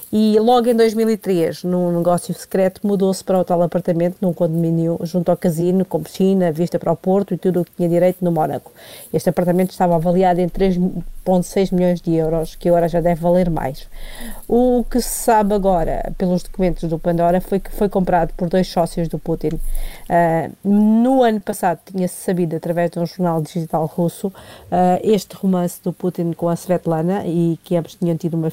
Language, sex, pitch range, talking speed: Portuguese, female, 170-195 Hz, 190 wpm